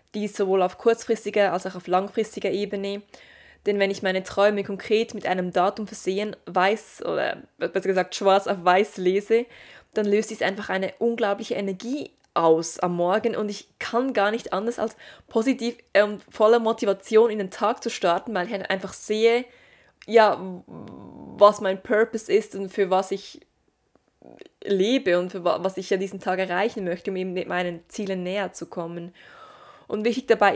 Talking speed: 175 wpm